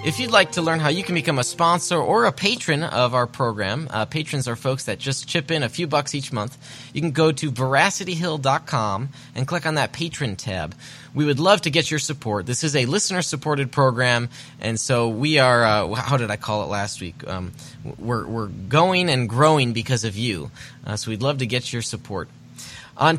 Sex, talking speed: male, 215 wpm